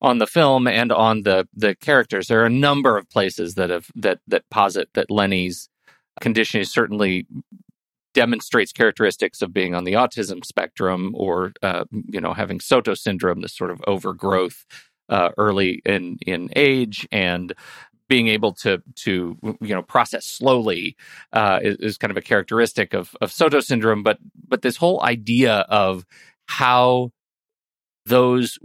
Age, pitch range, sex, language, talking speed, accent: 40-59, 100-130 Hz, male, English, 160 wpm, American